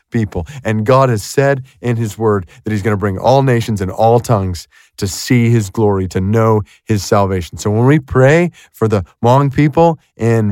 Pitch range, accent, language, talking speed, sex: 115-145 Hz, American, English, 200 wpm, male